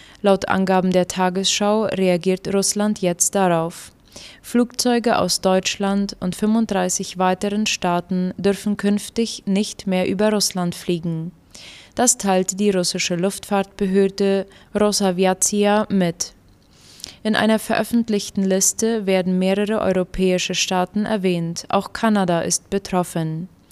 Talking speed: 105 wpm